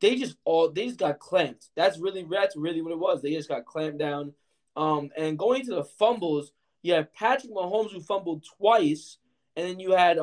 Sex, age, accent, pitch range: male, 20-39, American, 150-200 Hz